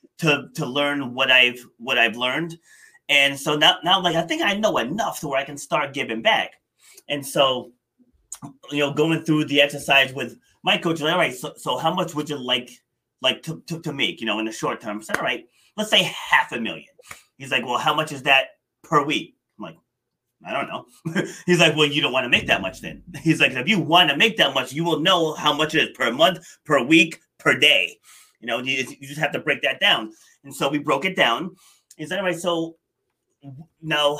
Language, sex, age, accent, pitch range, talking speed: English, male, 30-49, American, 140-175 Hz, 235 wpm